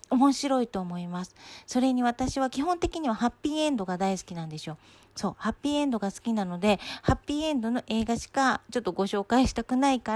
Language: Japanese